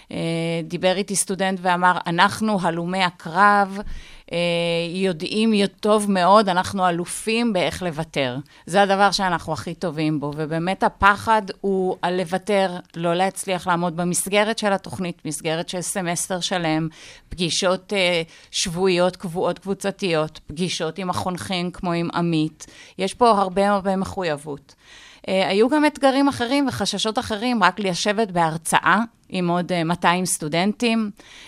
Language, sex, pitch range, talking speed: Hebrew, female, 170-205 Hz, 120 wpm